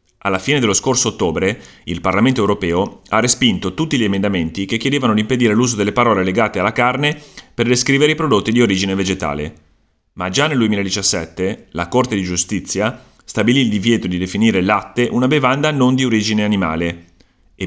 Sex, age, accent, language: male, 30-49, native, Italian